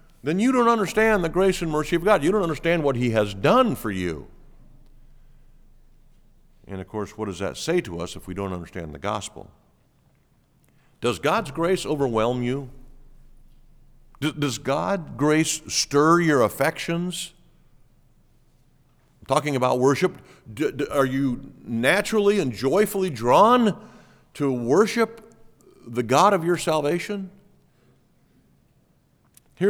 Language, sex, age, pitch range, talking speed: English, male, 50-69, 120-175 Hz, 125 wpm